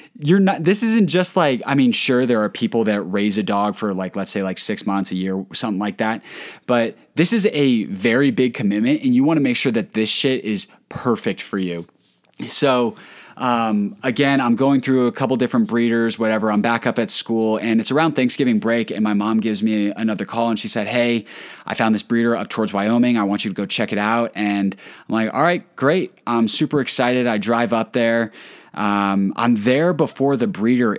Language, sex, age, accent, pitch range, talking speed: English, male, 20-39, American, 105-125 Hz, 220 wpm